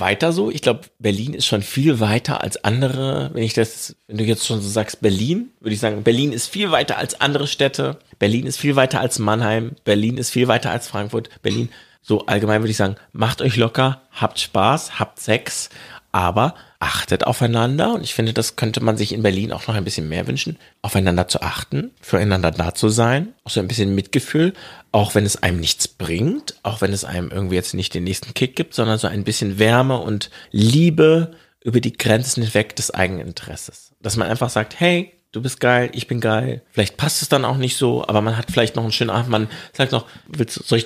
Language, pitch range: German, 105-130 Hz